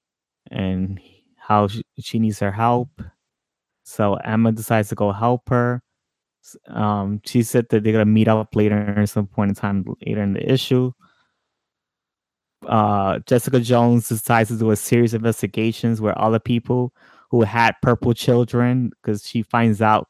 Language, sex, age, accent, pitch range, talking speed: English, male, 20-39, American, 105-115 Hz, 160 wpm